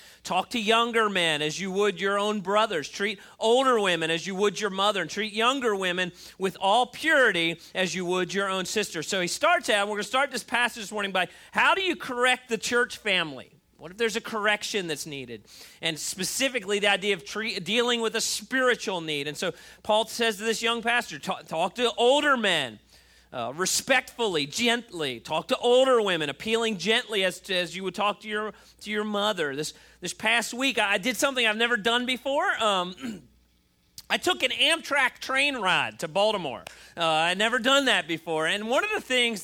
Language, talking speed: English, 200 wpm